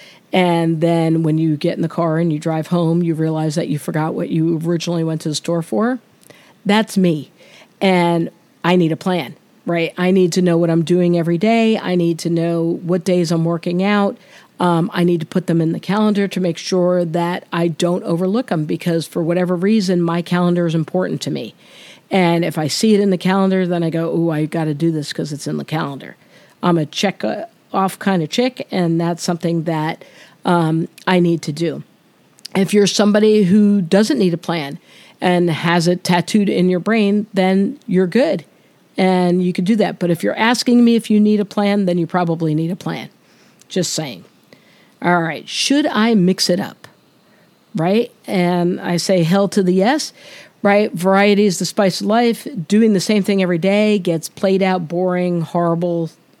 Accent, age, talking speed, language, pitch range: American, 50-69, 200 wpm, English, 170-200 Hz